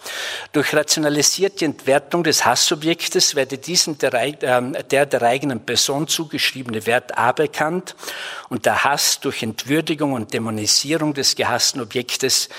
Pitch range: 125-155 Hz